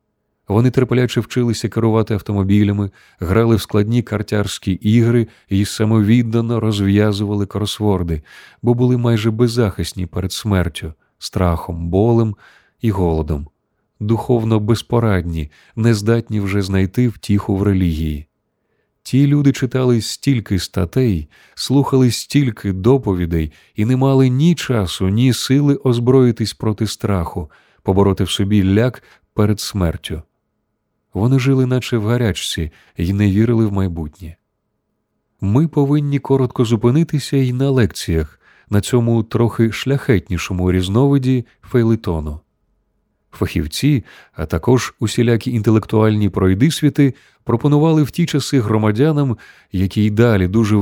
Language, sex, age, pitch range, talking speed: Ukrainian, male, 30-49, 100-125 Hz, 110 wpm